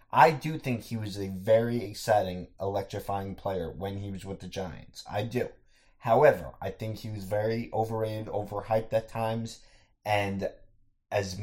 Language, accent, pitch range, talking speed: English, American, 95-120 Hz, 160 wpm